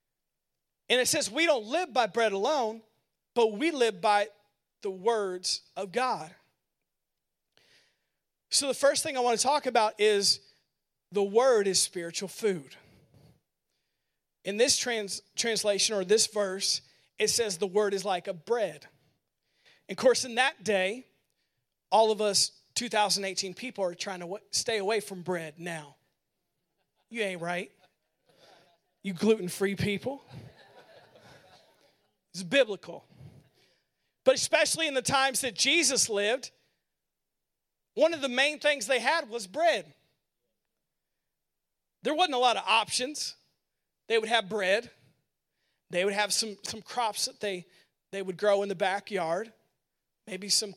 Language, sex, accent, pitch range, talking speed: English, male, American, 195-250 Hz, 140 wpm